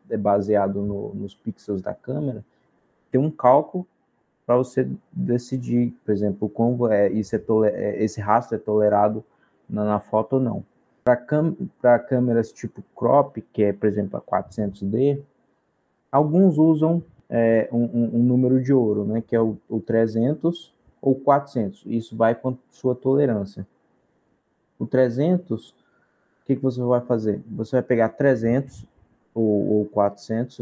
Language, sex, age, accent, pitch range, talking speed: Portuguese, male, 20-39, Brazilian, 105-135 Hz, 150 wpm